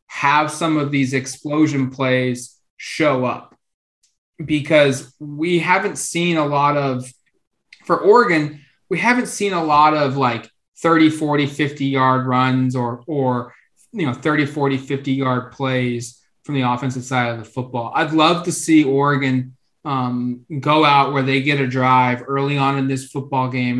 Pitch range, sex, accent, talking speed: 130-150 Hz, male, American, 160 wpm